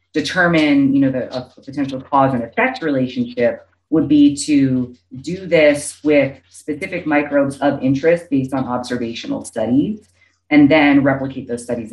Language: English